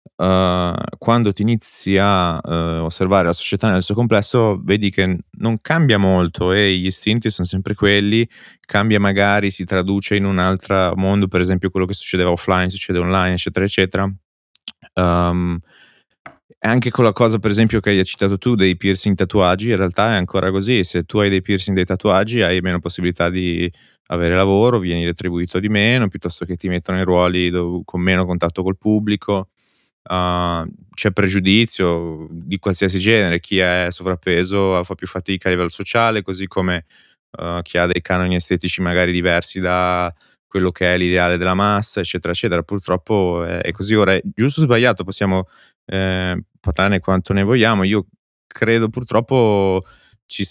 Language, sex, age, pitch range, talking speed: Italian, male, 20-39, 90-105 Hz, 165 wpm